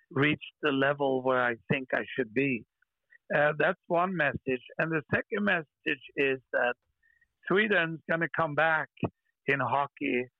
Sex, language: male, Finnish